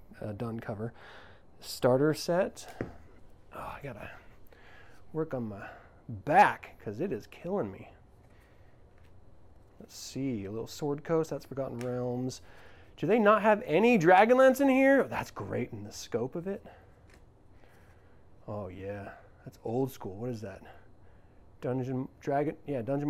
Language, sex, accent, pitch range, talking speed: English, male, American, 100-145 Hz, 145 wpm